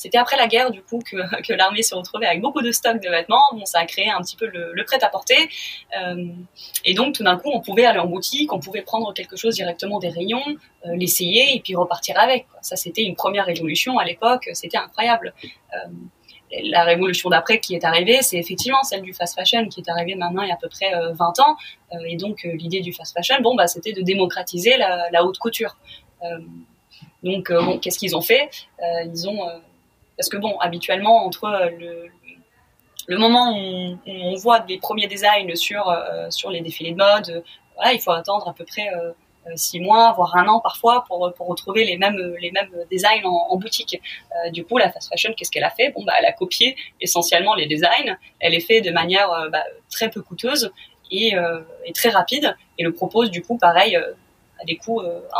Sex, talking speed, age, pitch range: female, 220 wpm, 20-39, 170-225 Hz